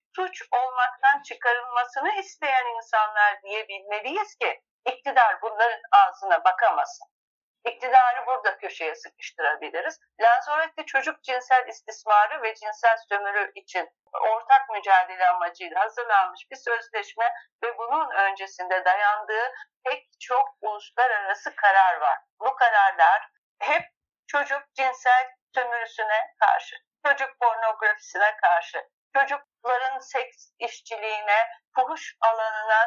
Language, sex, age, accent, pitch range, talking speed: Turkish, female, 50-69, native, 205-265 Hz, 95 wpm